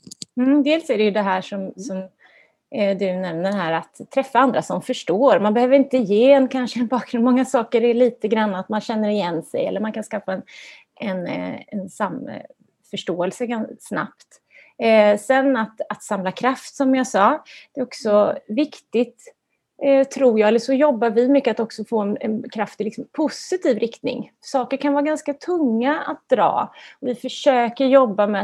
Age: 30-49